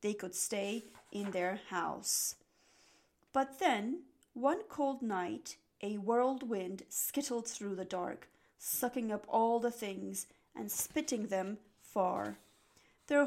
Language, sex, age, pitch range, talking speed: English, female, 30-49, 205-265 Hz, 120 wpm